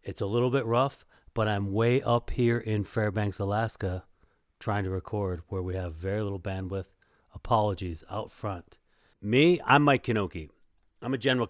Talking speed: 165 wpm